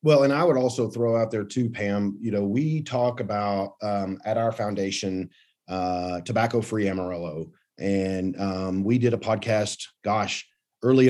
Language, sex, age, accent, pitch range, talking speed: English, male, 30-49, American, 100-130 Hz, 160 wpm